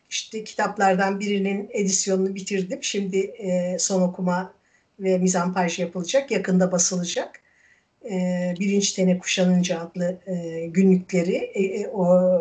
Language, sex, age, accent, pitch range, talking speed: Turkish, female, 60-79, native, 185-265 Hz, 90 wpm